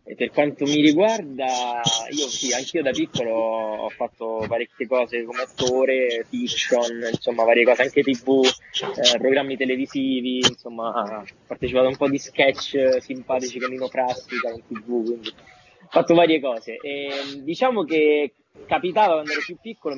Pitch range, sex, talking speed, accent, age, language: 130-170 Hz, male, 155 wpm, native, 20-39, Italian